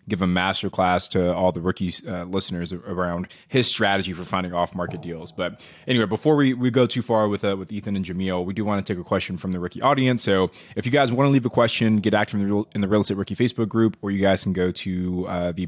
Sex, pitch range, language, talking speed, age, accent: male, 90-115 Hz, English, 270 wpm, 20-39, American